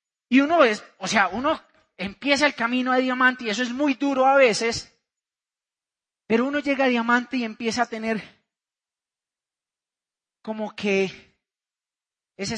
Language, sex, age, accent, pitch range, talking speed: Spanish, male, 30-49, Colombian, 205-260 Hz, 145 wpm